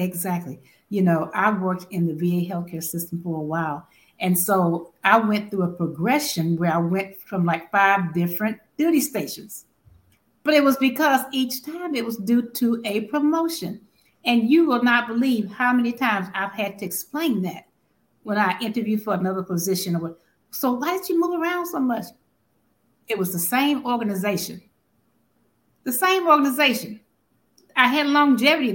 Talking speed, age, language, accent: 165 wpm, 60-79, English, American